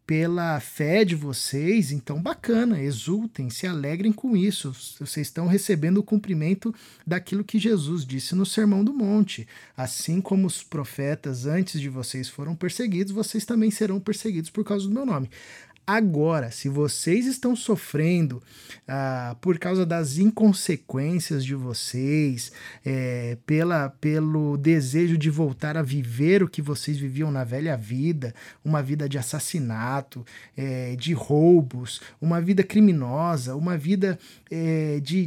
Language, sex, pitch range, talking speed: Portuguese, male, 145-200 Hz, 135 wpm